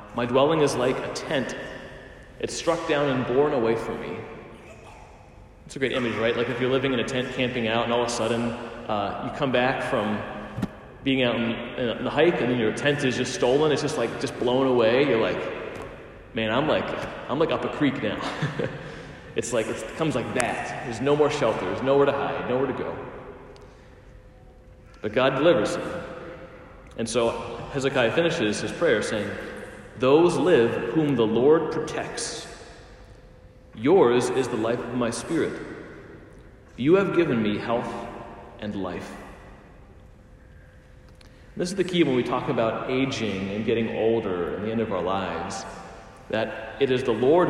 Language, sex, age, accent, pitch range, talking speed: English, male, 30-49, American, 110-135 Hz, 175 wpm